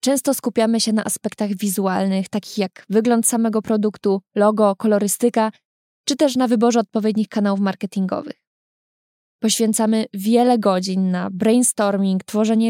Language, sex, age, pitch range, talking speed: Polish, female, 20-39, 205-235 Hz, 125 wpm